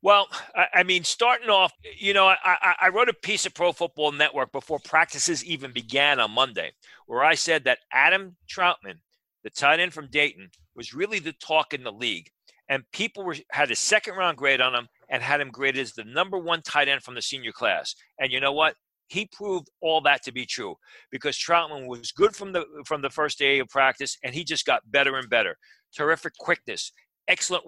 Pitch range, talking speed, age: 135-185 Hz, 210 wpm, 40-59